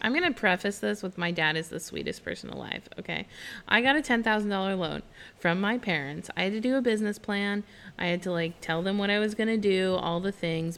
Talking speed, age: 245 wpm, 20-39